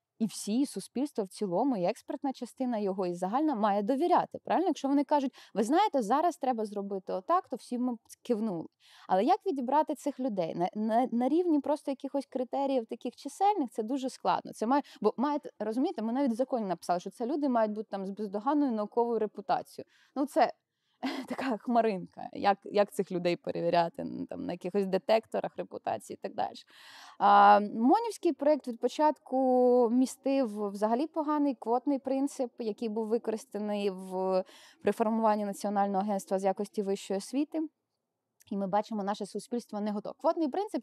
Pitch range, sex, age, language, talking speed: 210-280 Hz, female, 20-39, Ukrainian, 165 wpm